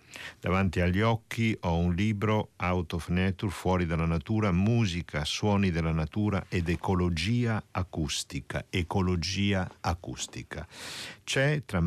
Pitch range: 80-110 Hz